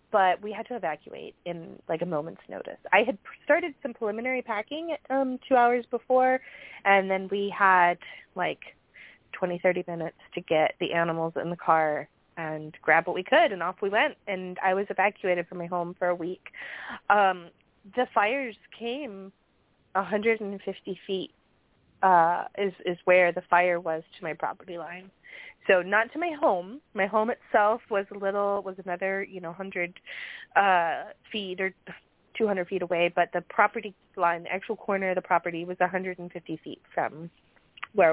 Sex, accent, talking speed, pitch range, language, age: female, American, 170 wpm, 175-230 Hz, English, 20-39